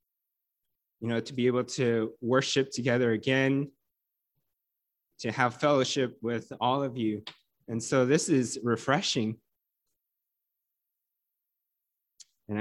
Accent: American